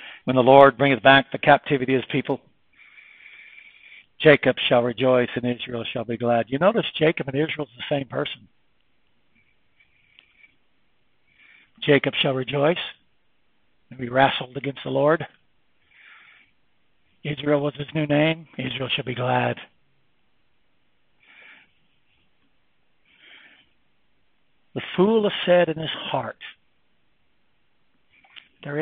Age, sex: 60-79, male